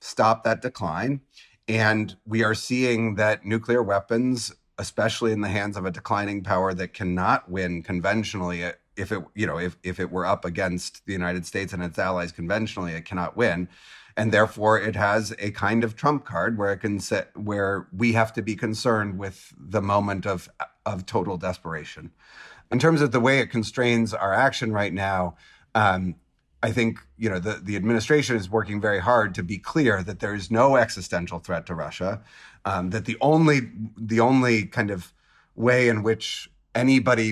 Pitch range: 95-115 Hz